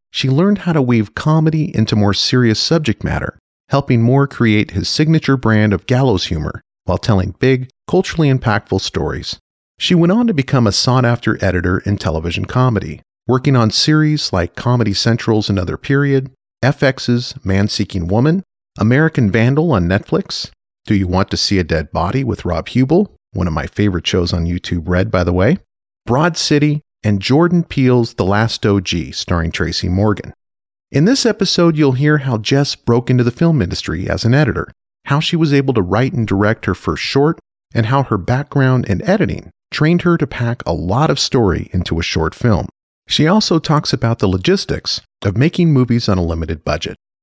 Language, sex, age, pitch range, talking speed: English, male, 40-59, 95-140 Hz, 180 wpm